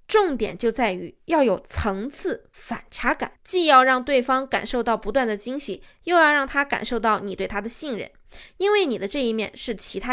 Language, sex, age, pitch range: Chinese, female, 20-39, 210-285 Hz